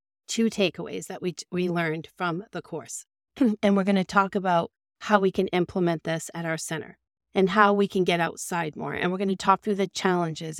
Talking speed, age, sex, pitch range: 220 wpm, 40-59, female, 170-210 Hz